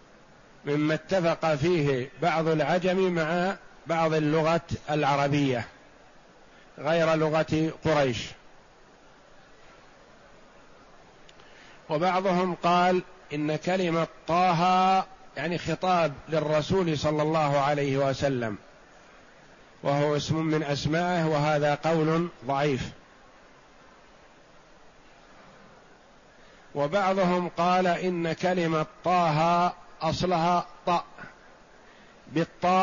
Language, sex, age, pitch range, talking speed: Arabic, male, 50-69, 150-175 Hz, 70 wpm